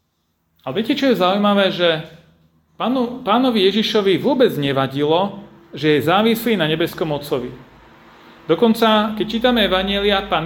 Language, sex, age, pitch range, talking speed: Slovak, male, 40-59, 150-225 Hz, 120 wpm